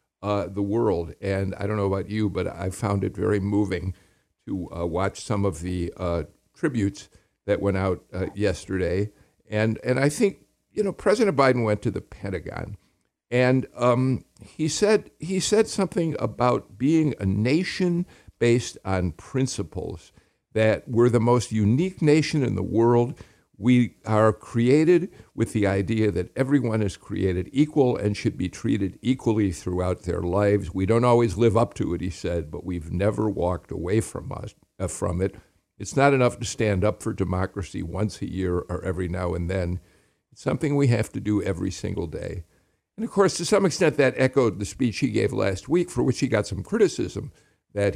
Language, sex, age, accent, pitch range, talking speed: English, male, 50-69, American, 95-125 Hz, 185 wpm